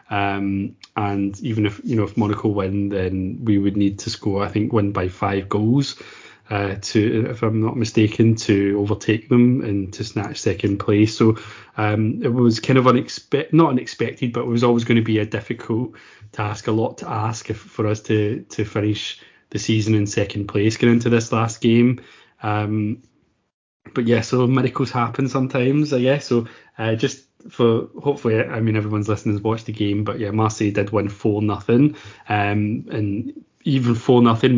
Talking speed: 185 wpm